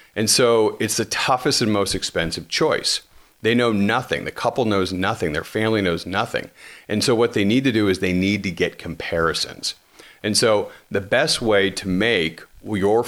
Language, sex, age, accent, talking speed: English, male, 40-59, American, 190 wpm